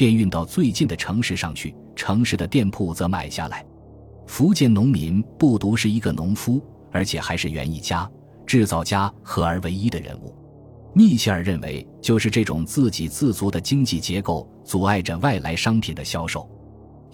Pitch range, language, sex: 85-120 Hz, Chinese, male